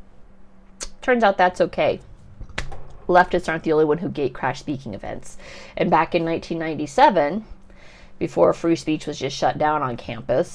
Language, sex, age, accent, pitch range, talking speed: English, female, 30-49, American, 160-190 Hz, 150 wpm